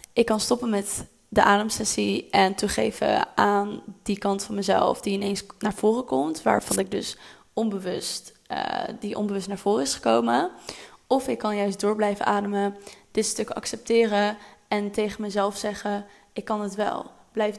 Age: 20-39